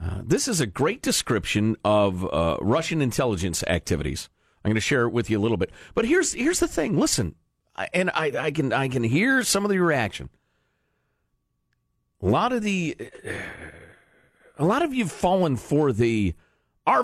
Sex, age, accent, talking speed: male, 40-59, American, 180 wpm